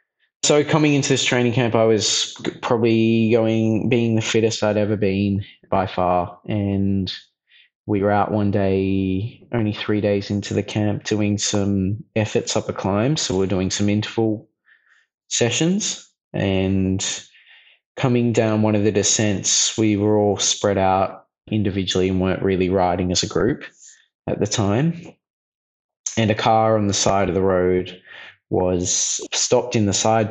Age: 20-39